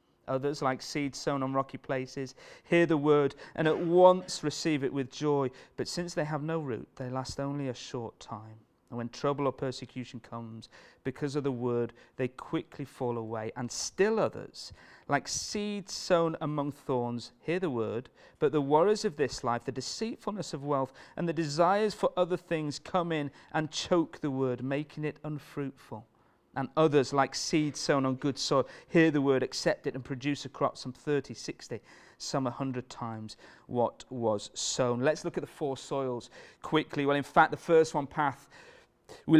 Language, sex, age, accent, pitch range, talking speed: English, male, 40-59, British, 130-160 Hz, 185 wpm